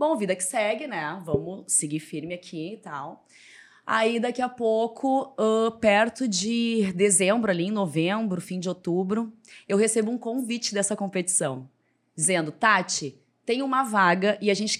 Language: Portuguese